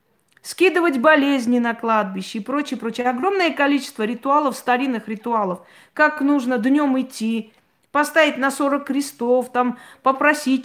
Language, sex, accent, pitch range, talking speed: Russian, female, native, 215-275 Hz, 125 wpm